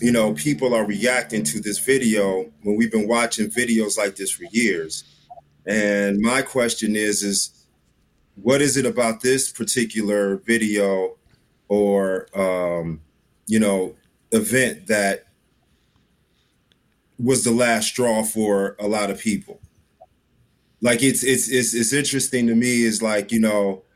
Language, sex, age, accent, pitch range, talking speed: English, male, 30-49, American, 100-125 Hz, 140 wpm